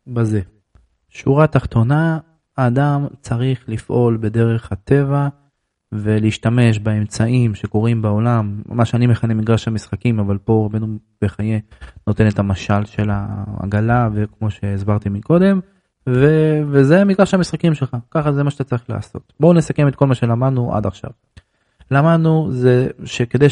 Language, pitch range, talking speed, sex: Hebrew, 110-145 Hz, 130 wpm, male